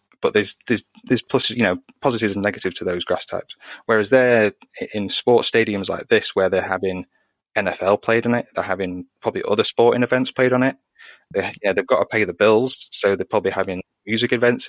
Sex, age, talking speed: male, 20-39, 215 wpm